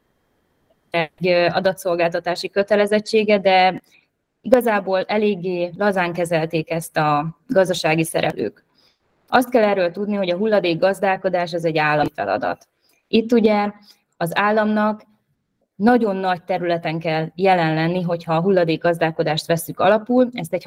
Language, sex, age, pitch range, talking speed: Hungarian, female, 20-39, 165-210 Hz, 120 wpm